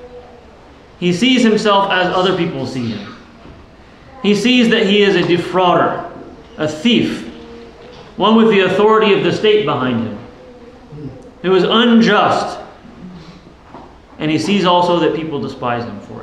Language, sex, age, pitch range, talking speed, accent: English, male, 30-49, 195-255 Hz, 140 wpm, American